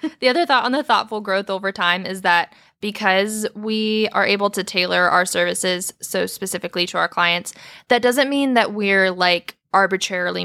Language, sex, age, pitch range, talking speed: English, female, 10-29, 175-205 Hz, 180 wpm